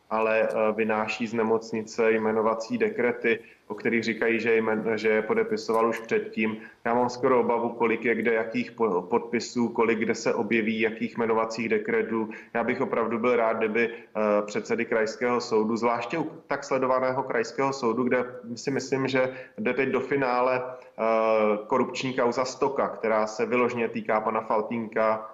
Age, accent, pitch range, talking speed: 30-49, native, 110-125 Hz, 145 wpm